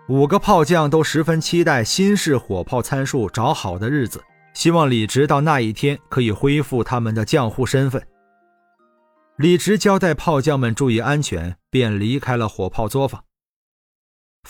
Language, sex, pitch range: Chinese, male, 110-155 Hz